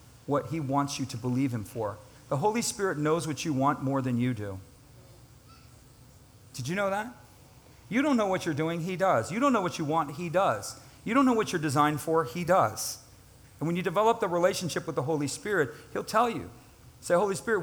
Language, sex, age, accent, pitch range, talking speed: English, male, 40-59, American, 125-185 Hz, 220 wpm